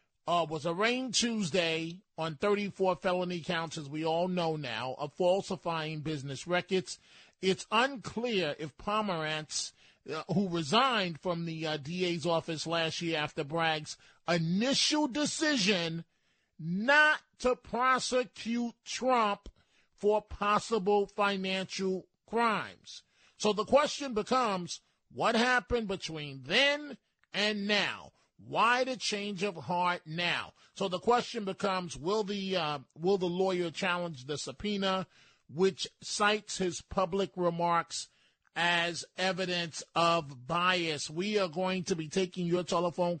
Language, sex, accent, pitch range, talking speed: English, male, American, 165-205 Hz, 125 wpm